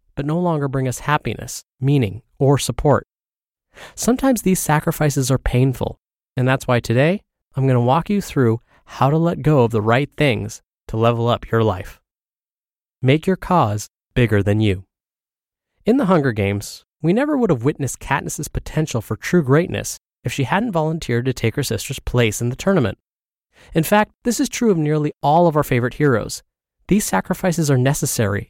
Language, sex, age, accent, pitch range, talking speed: English, male, 20-39, American, 120-160 Hz, 180 wpm